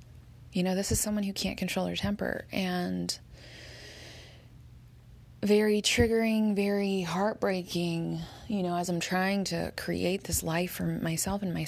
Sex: female